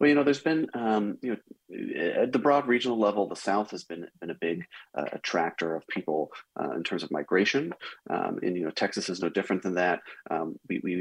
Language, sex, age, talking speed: English, male, 30-49, 230 wpm